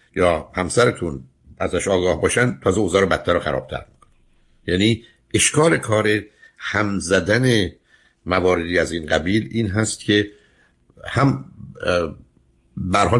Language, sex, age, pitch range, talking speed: Persian, male, 60-79, 85-115 Hz, 110 wpm